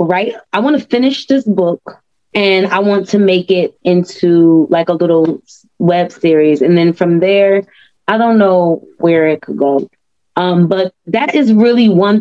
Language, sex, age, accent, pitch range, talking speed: English, female, 20-39, American, 175-215 Hz, 175 wpm